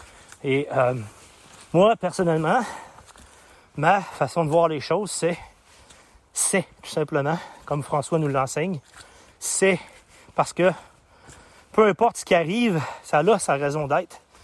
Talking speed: 130 wpm